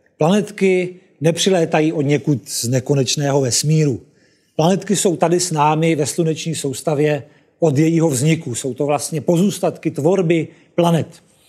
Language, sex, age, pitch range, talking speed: Czech, male, 40-59, 140-170 Hz, 125 wpm